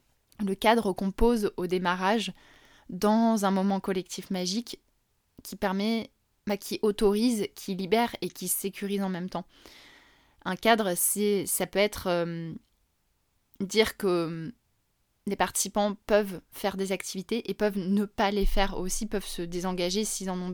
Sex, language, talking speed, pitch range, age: female, French, 150 wpm, 180-210 Hz, 20-39